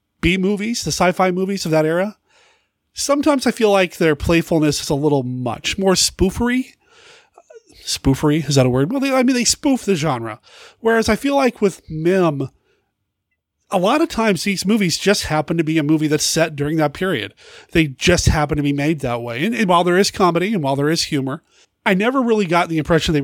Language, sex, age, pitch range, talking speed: English, male, 30-49, 145-200 Hz, 205 wpm